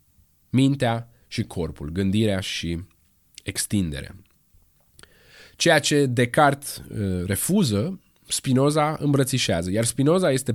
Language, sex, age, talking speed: Romanian, male, 20-39, 85 wpm